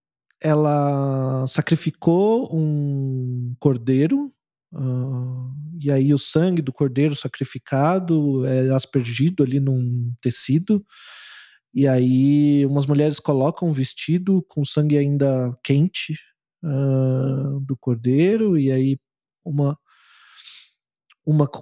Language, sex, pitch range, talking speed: Portuguese, male, 135-175 Hz, 100 wpm